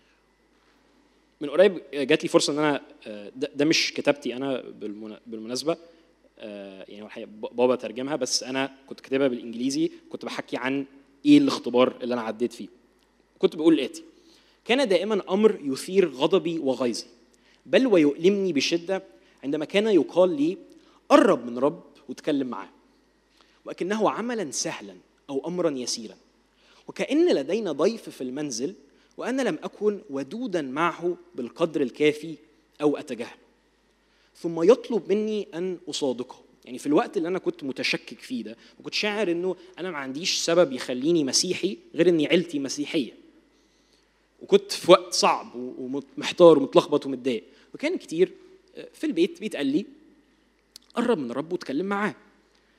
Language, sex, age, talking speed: Arabic, male, 20-39, 130 wpm